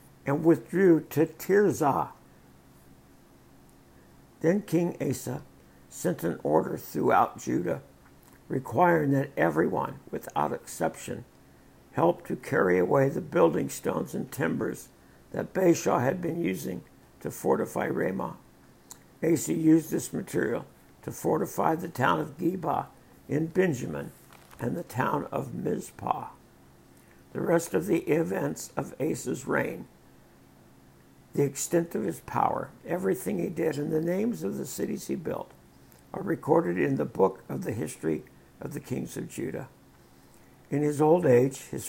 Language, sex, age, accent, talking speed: English, male, 60-79, American, 135 wpm